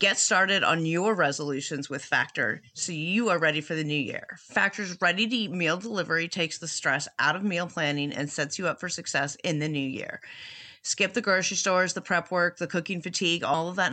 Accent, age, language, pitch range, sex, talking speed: American, 30-49, English, 155-190 Hz, female, 210 wpm